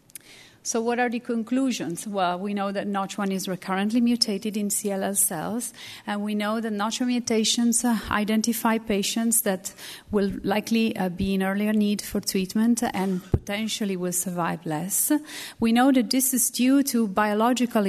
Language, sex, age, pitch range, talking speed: English, female, 30-49, 190-230 Hz, 155 wpm